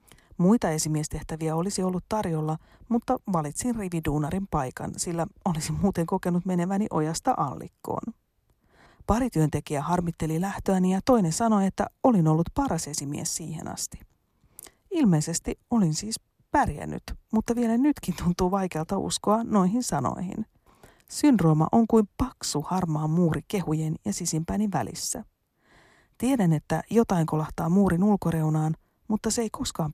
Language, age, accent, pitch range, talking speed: Finnish, 40-59, native, 155-210 Hz, 125 wpm